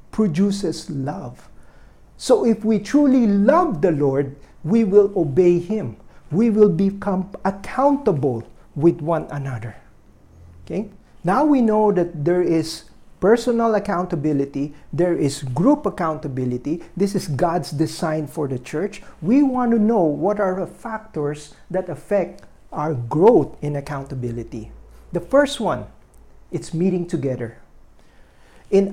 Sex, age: male, 50-69